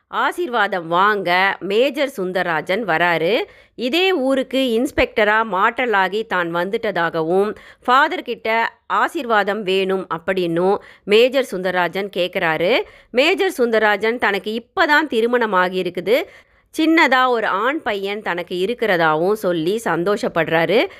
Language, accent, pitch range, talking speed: Tamil, native, 185-255 Hz, 90 wpm